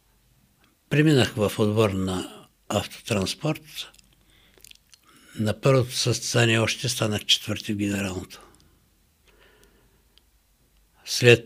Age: 60-79